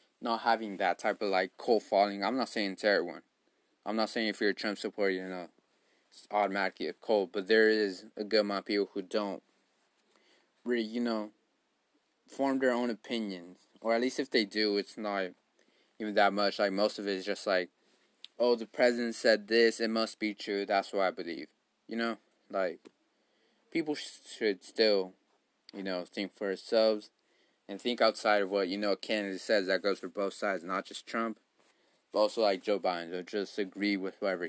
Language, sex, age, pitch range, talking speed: English, male, 20-39, 95-115 Hz, 200 wpm